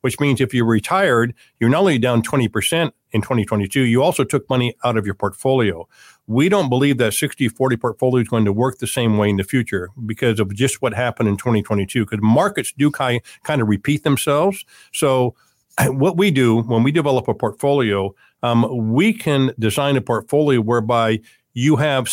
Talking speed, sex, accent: 185 wpm, male, American